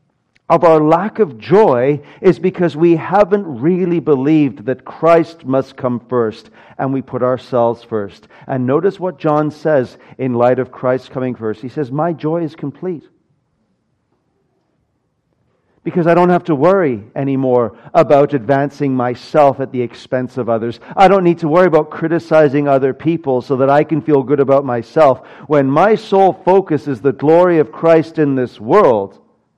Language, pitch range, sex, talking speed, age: English, 120-155 Hz, male, 165 wpm, 50-69